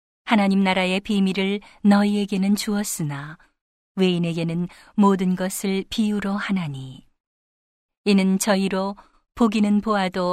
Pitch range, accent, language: 180-205 Hz, native, Korean